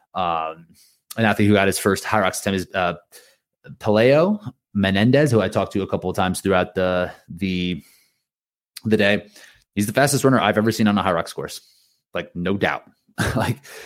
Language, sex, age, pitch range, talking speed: English, male, 30-49, 90-115 Hz, 185 wpm